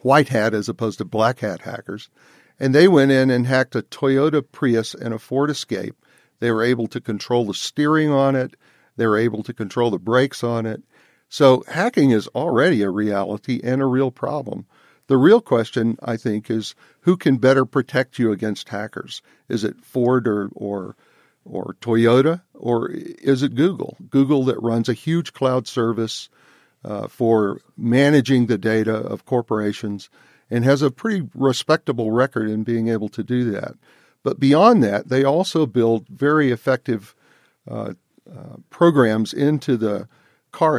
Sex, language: male, English